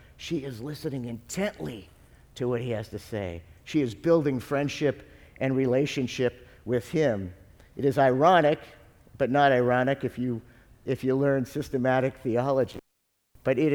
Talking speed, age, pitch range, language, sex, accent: 145 wpm, 50-69, 115-145 Hz, English, male, American